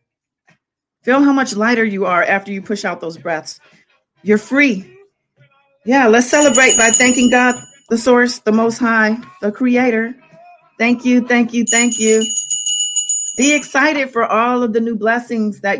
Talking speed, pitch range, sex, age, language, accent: 160 wpm, 215-265 Hz, female, 40-59, English, American